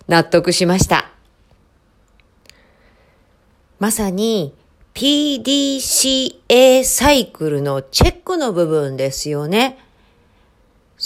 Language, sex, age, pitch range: Japanese, female, 40-59, 155-220 Hz